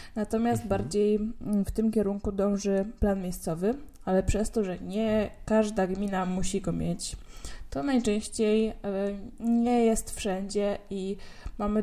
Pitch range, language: 185-225 Hz, Polish